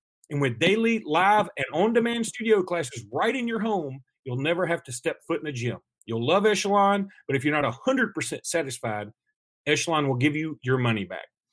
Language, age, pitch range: English, 40-59, 135-200 Hz